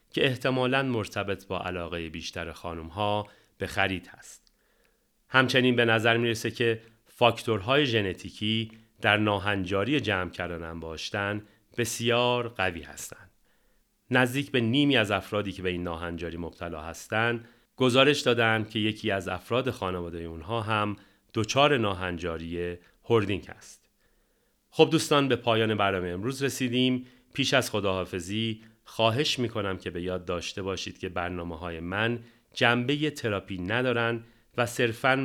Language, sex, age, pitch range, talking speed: Persian, male, 40-59, 90-120 Hz, 130 wpm